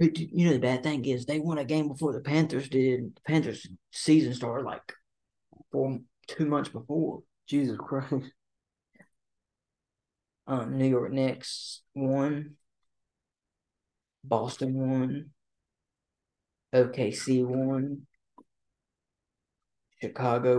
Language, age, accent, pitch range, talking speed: English, 40-59, American, 120-140 Hz, 100 wpm